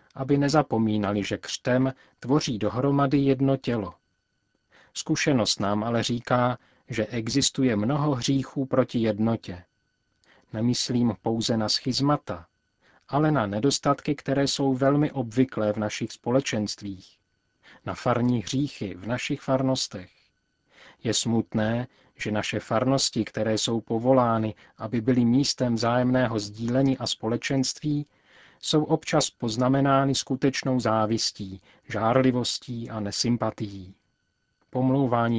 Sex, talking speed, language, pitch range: male, 105 wpm, Czech, 110-135 Hz